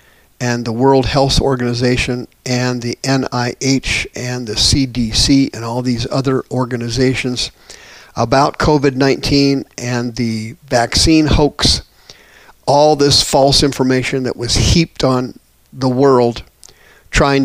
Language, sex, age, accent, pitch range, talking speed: English, male, 50-69, American, 120-140 Hz, 115 wpm